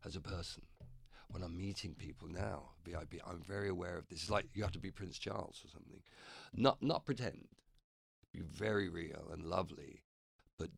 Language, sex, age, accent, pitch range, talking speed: English, male, 50-69, British, 80-100 Hz, 185 wpm